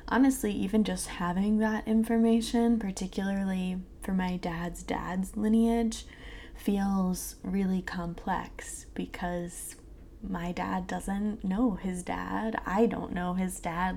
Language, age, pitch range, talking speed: English, 20-39, 175-210 Hz, 115 wpm